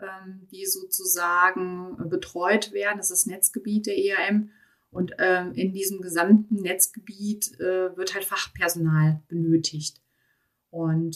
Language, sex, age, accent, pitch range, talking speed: German, female, 30-49, German, 165-215 Hz, 120 wpm